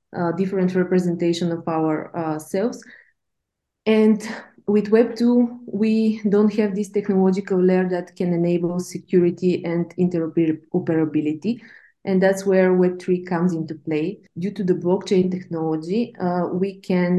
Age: 20-39